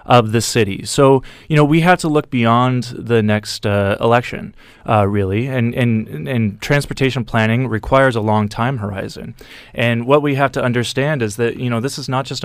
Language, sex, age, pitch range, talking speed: English, male, 30-49, 110-130 Hz, 200 wpm